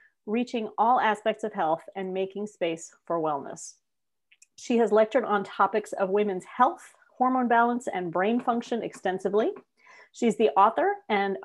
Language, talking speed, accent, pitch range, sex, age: English, 145 wpm, American, 190-265 Hz, female, 40-59